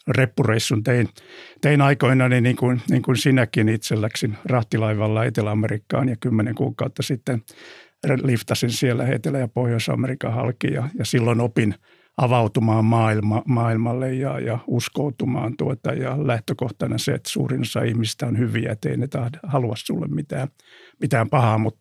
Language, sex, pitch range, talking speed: Finnish, male, 115-135 Hz, 140 wpm